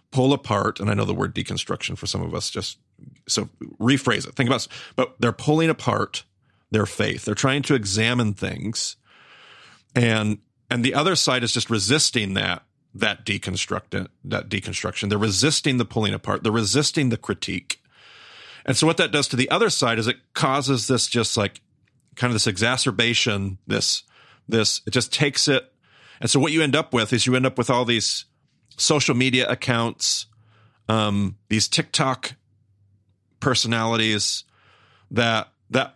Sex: male